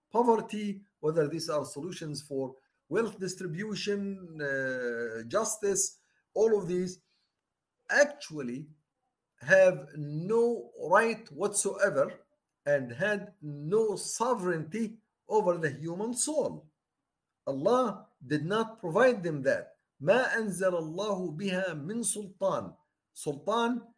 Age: 50-69